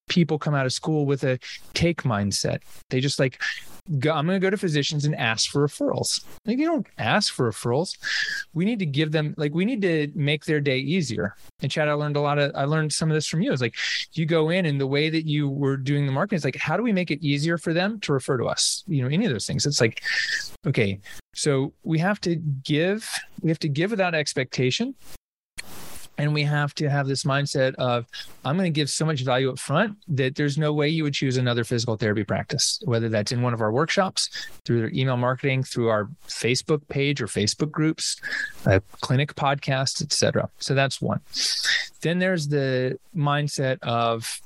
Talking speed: 215 wpm